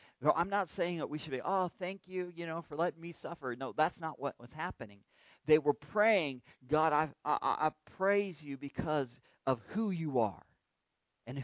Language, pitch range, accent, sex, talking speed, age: English, 130-165 Hz, American, male, 200 wpm, 40-59